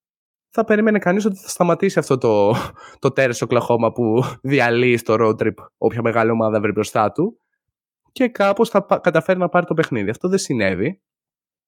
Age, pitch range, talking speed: 20-39, 110-160 Hz, 170 wpm